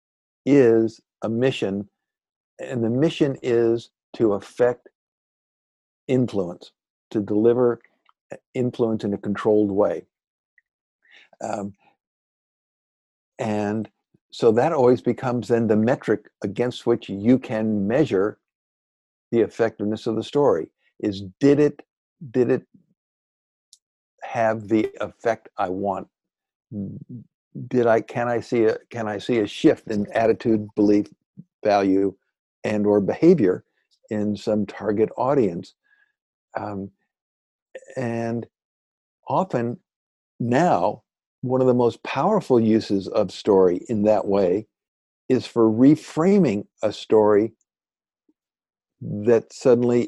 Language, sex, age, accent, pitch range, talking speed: English, male, 60-79, American, 105-125 Hz, 110 wpm